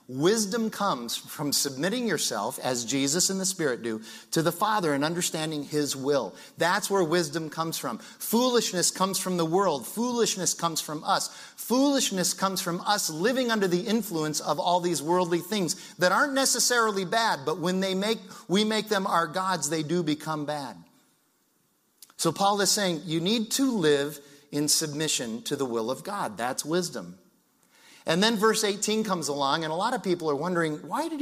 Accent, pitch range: American, 155-215 Hz